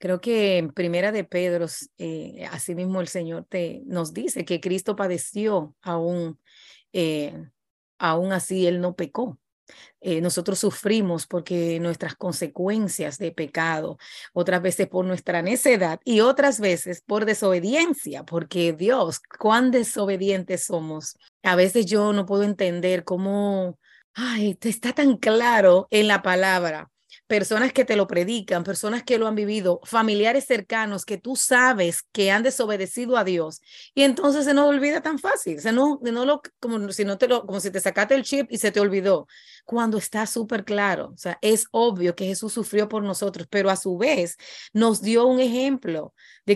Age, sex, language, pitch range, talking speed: 30-49, female, English, 180-230 Hz, 165 wpm